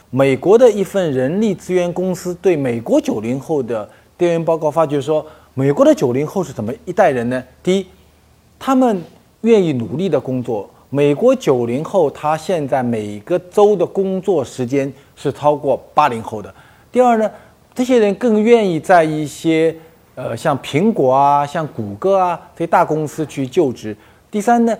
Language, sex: Chinese, male